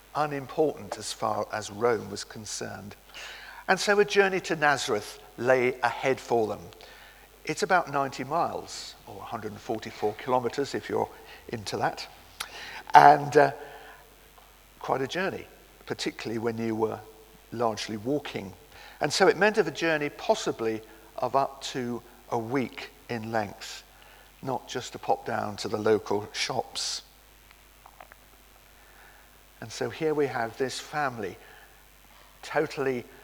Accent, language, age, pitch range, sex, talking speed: British, English, 50-69, 115-145 Hz, male, 130 wpm